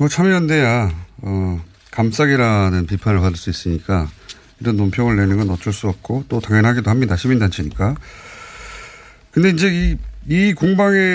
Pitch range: 100-160 Hz